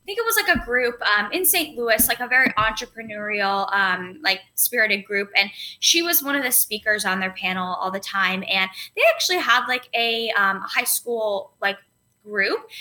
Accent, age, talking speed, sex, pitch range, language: American, 10-29, 200 wpm, female, 200-265 Hz, English